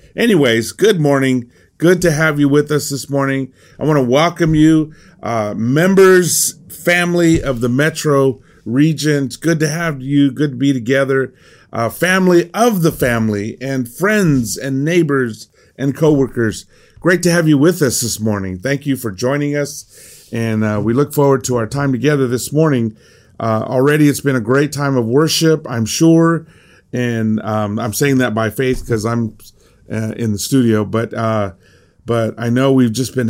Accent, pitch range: American, 110-145 Hz